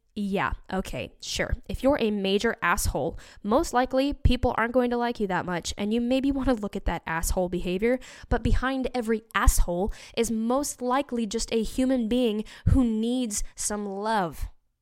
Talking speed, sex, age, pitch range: 175 wpm, female, 10-29, 190-240 Hz